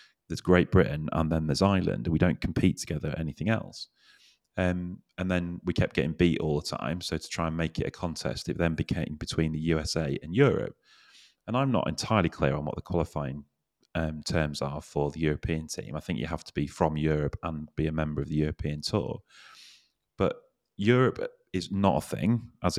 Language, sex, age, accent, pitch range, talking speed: English, male, 30-49, British, 80-95 Hz, 205 wpm